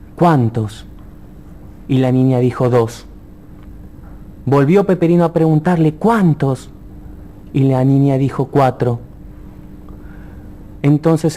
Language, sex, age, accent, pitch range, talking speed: Spanish, male, 30-49, Argentinian, 130-170 Hz, 90 wpm